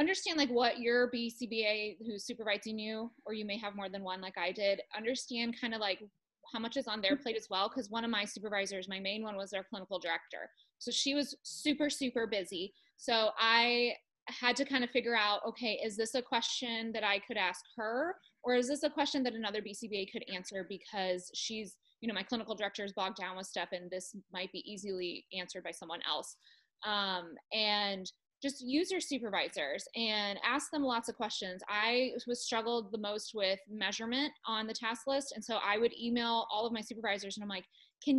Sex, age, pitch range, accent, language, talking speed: female, 20-39, 205-250 Hz, American, English, 210 wpm